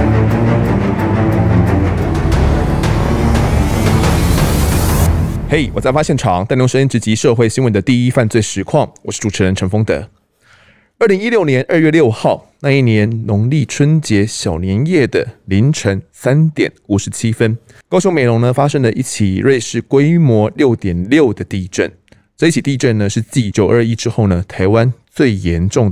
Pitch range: 100-130 Hz